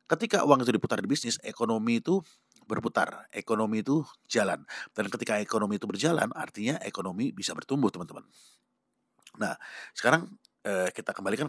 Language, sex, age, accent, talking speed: Indonesian, male, 30-49, native, 140 wpm